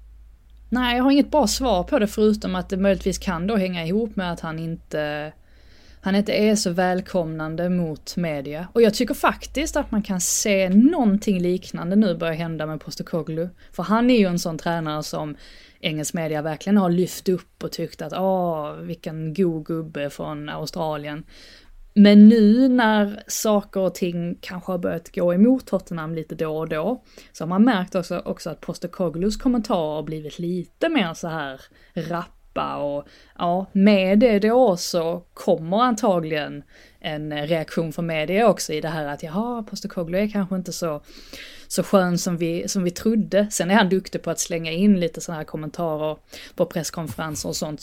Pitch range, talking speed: 160-200 Hz, 180 wpm